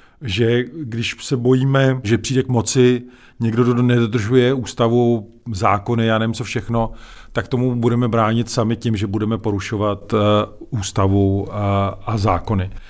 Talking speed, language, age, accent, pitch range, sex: 130 wpm, Czech, 40-59, native, 115-135 Hz, male